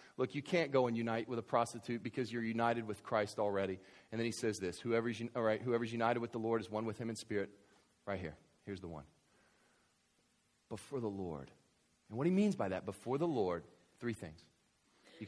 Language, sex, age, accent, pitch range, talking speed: English, male, 40-59, American, 100-125 Hz, 210 wpm